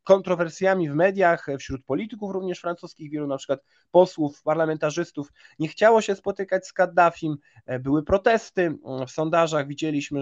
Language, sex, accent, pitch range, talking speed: Polish, male, native, 145-175 Hz, 135 wpm